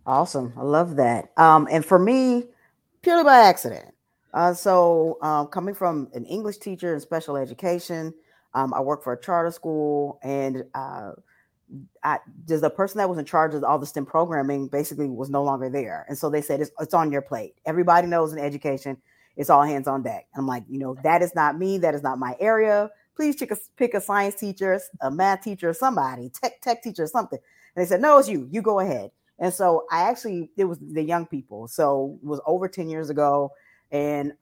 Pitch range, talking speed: 145-195 Hz, 210 wpm